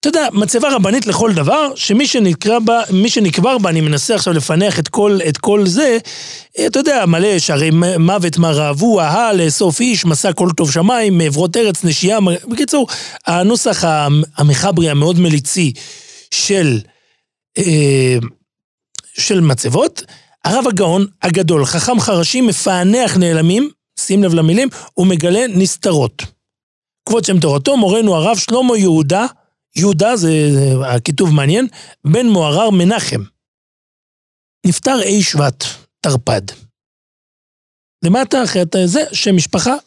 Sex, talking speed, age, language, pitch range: male, 125 wpm, 40-59, Hebrew, 155-215 Hz